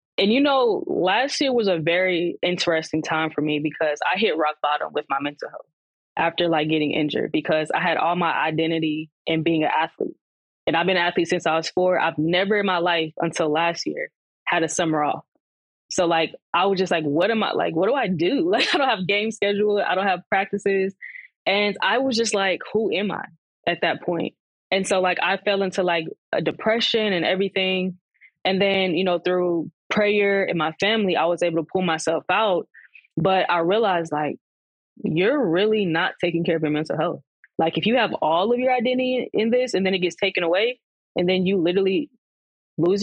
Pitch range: 165-205 Hz